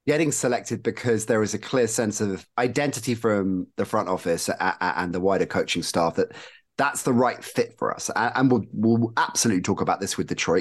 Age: 30-49